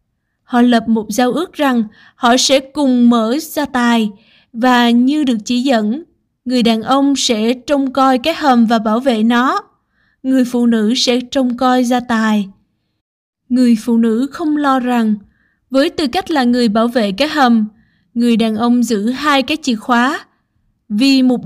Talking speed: 175 wpm